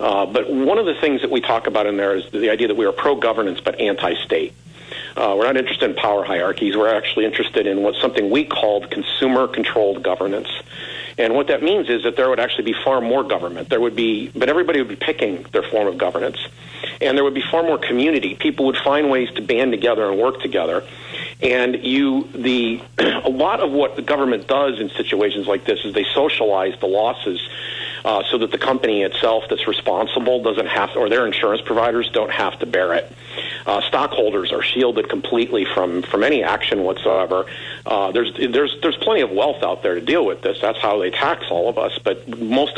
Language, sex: English, male